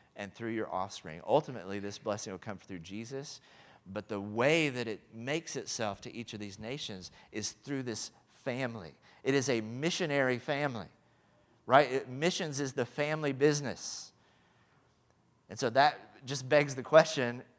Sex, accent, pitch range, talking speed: male, American, 115-145 Hz, 155 wpm